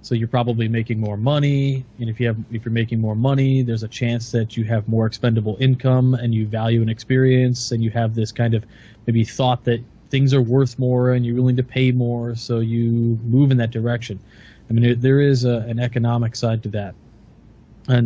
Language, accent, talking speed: English, American, 215 wpm